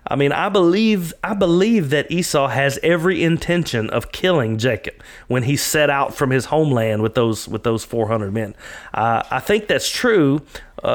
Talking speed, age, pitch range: 175 wpm, 40-59, 125-165 Hz